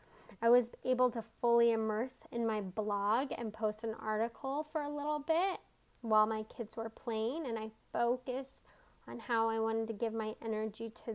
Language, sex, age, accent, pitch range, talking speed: English, female, 10-29, American, 215-260 Hz, 185 wpm